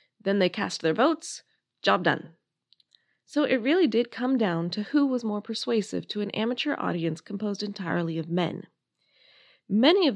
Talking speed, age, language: 165 wpm, 20-39, English